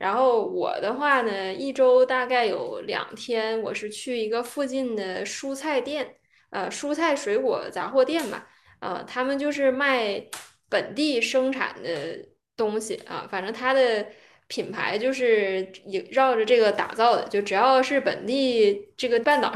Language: Chinese